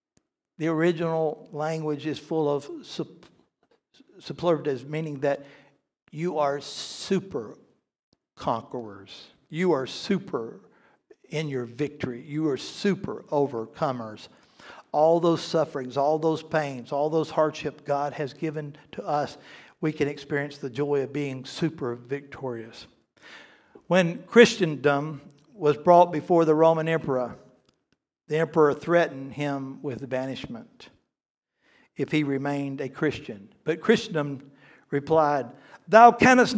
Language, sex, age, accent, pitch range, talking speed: English, male, 60-79, American, 140-185 Hz, 115 wpm